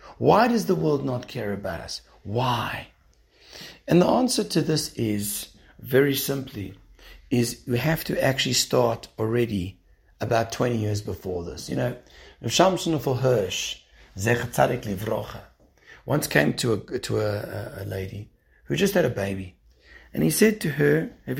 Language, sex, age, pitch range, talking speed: English, male, 60-79, 100-150 Hz, 140 wpm